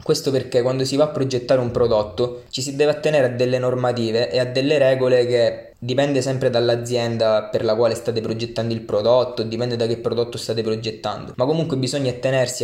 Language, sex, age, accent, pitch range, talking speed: Italian, male, 20-39, native, 115-130 Hz, 195 wpm